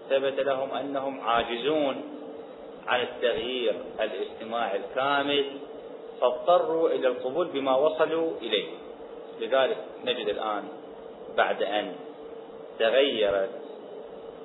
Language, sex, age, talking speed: Arabic, male, 30-49, 85 wpm